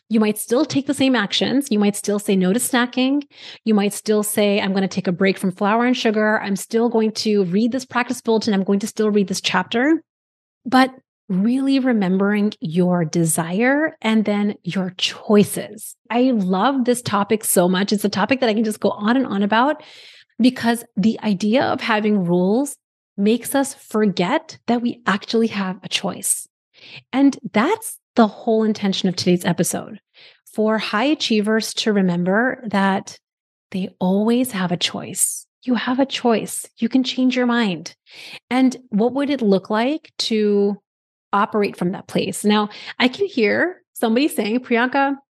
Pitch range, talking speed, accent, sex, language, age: 200-250 Hz, 175 wpm, American, female, English, 30-49